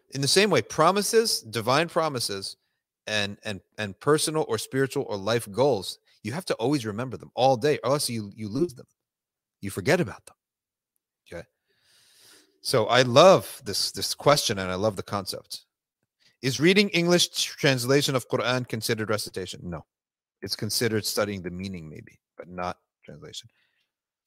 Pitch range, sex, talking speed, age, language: 105-140 Hz, male, 160 wpm, 30-49, English